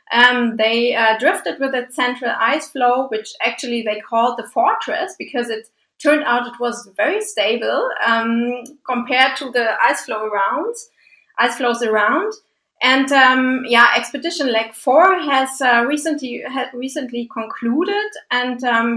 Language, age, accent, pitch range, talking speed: English, 20-39, German, 225-275 Hz, 145 wpm